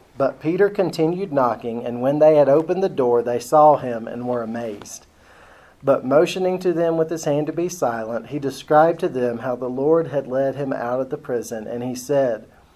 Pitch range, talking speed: 120-150 Hz, 205 wpm